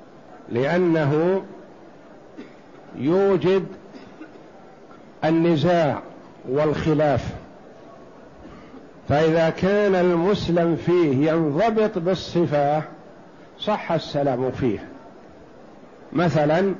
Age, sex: 60-79, male